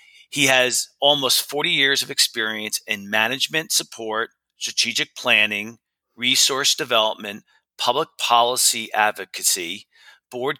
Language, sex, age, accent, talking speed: English, male, 40-59, American, 100 wpm